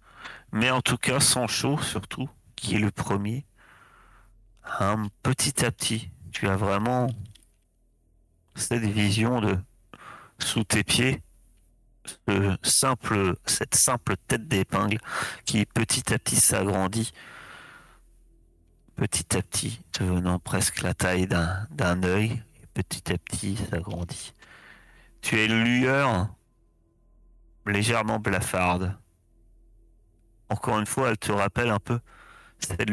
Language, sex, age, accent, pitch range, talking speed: French, male, 40-59, French, 90-115 Hz, 115 wpm